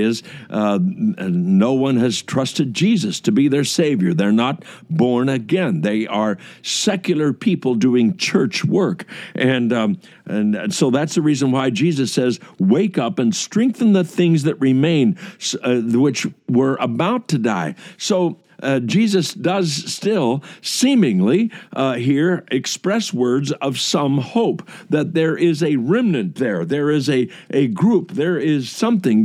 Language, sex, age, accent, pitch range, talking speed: English, male, 60-79, American, 130-190 Hz, 150 wpm